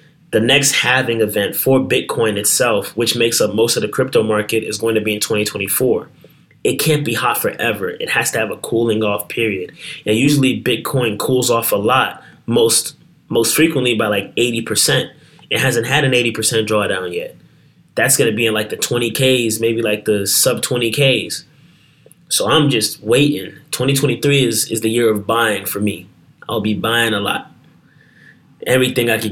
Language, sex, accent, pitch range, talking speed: English, male, American, 110-130 Hz, 180 wpm